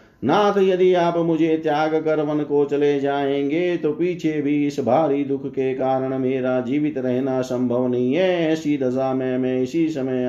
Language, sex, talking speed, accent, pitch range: Hindi, male, 175 wpm, native, 125-155 Hz